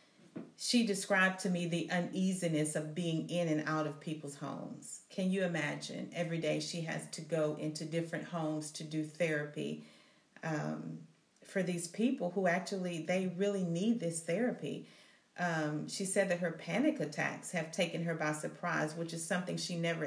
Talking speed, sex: 170 wpm, female